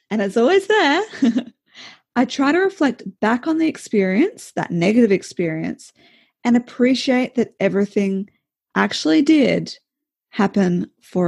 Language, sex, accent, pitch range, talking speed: English, female, Australian, 200-275 Hz, 120 wpm